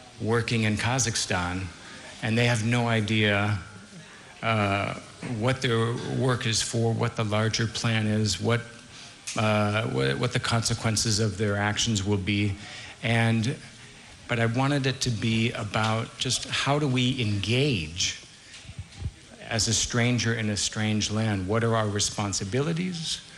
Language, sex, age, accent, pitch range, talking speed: Italian, male, 50-69, American, 105-125 Hz, 140 wpm